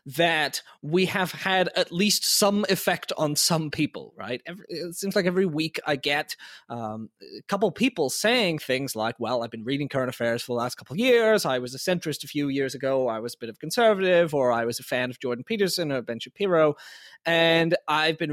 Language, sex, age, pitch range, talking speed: English, male, 20-39, 135-190 Hz, 215 wpm